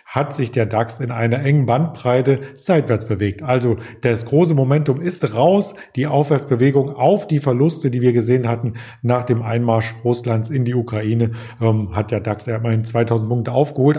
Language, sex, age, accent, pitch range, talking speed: German, male, 40-59, German, 120-150 Hz, 170 wpm